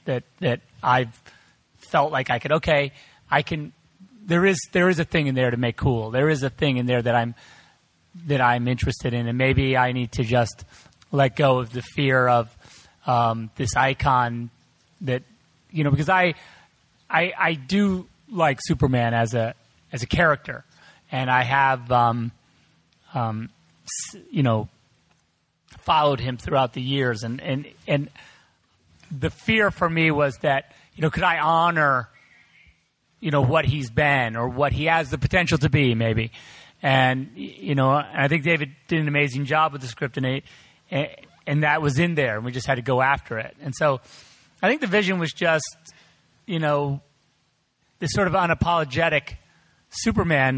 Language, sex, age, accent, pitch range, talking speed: English, male, 30-49, American, 125-155 Hz, 170 wpm